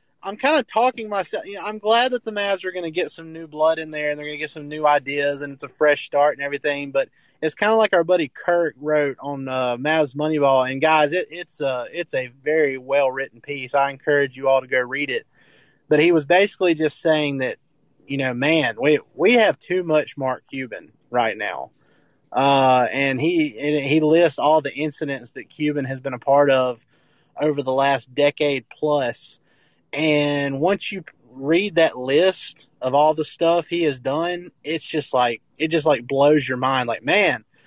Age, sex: 20-39, male